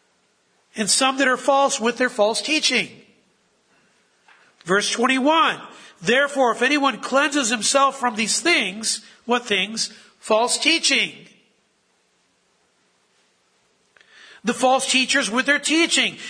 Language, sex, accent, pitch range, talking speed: English, male, American, 200-265 Hz, 105 wpm